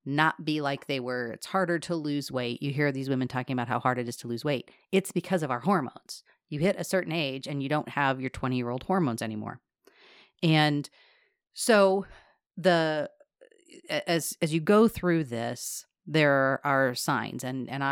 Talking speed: 185 wpm